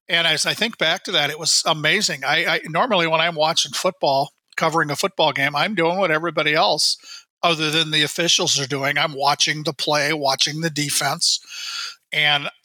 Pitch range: 145-170 Hz